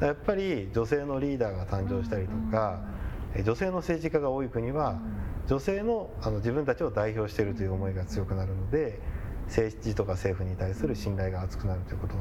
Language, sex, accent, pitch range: Japanese, male, native, 100-125 Hz